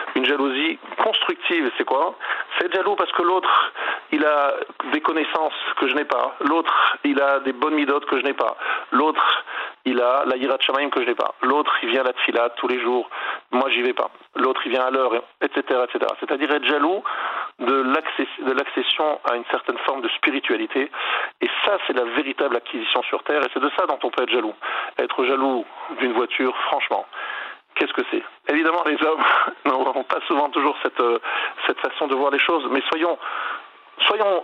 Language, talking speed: French, 200 wpm